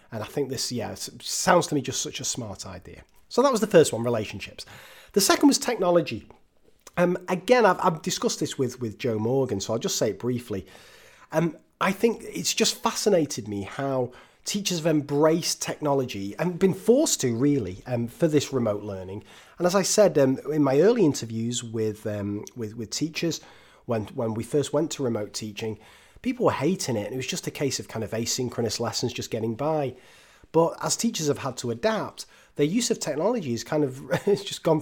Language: English